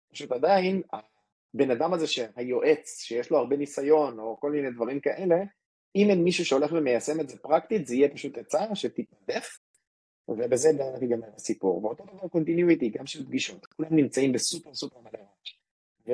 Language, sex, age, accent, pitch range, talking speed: English, male, 30-49, Italian, 120-165 Hz, 155 wpm